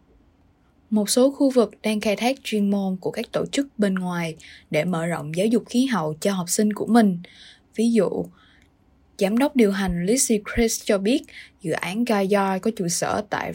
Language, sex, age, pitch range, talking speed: Vietnamese, female, 20-39, 180-225 Hz, 200 wpm